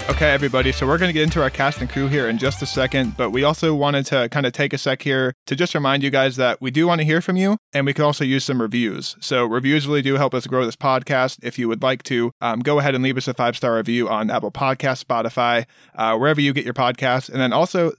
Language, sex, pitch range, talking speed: English, male, 120-145 Hz, 280 wpm